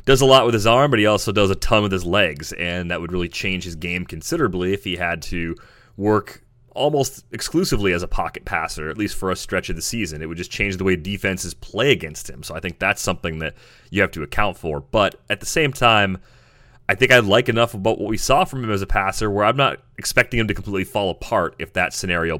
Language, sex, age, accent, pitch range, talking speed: English, male, 30-49, American, 90-115 Hz, 250 wpm